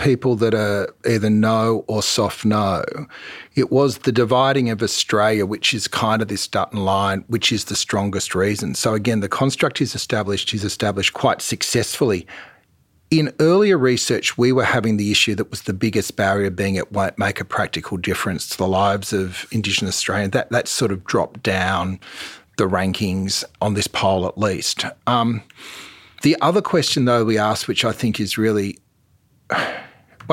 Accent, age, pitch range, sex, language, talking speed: Australian, 40-59, 100-115 Hz, male, English, 175 wpm